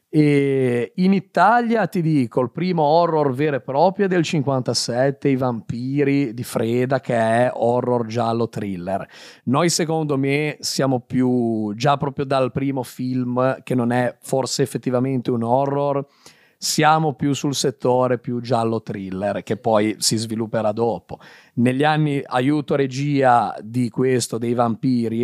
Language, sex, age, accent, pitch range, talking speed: Italian, male, 40-59, native, 115-140 Hz, 140 wpm